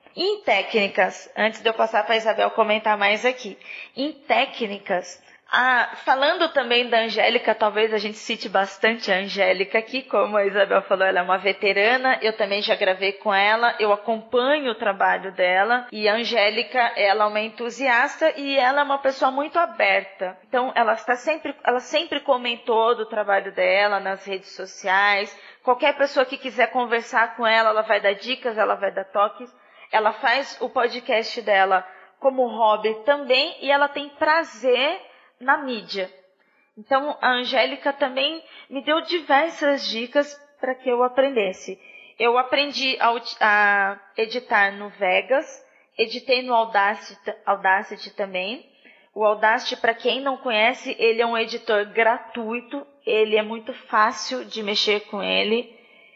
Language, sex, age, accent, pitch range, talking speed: Portuguese, female, 20-39, Brazilian, 205-260 Hz, 150 wpm